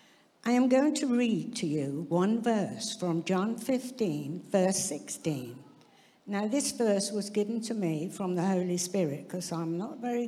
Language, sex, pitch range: English, female, 170-240 Hz